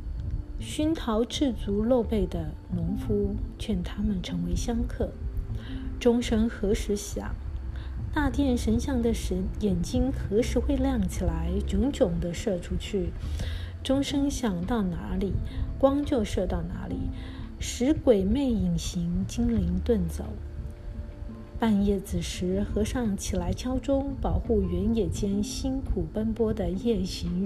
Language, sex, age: Chinese, female, 50-69